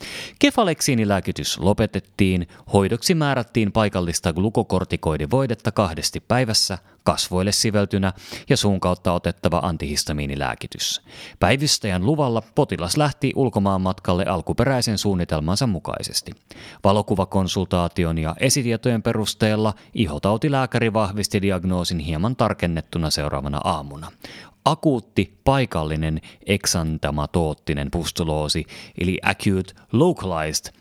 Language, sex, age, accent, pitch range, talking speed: Finnish, male, 30-49, native, 85-110 Hz, 80 wpm